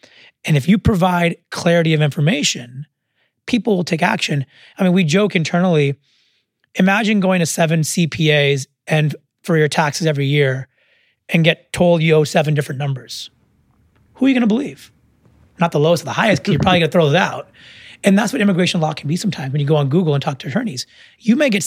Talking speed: 210 wpm